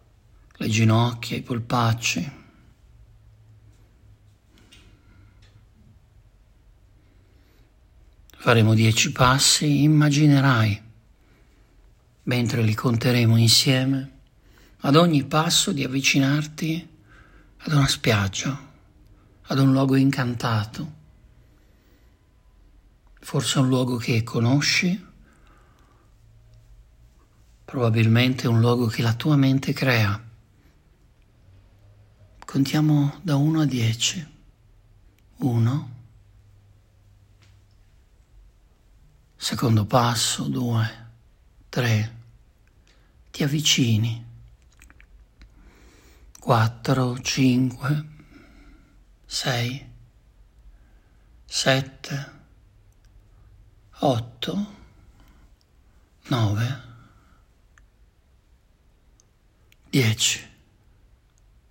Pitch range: 105-135 Hz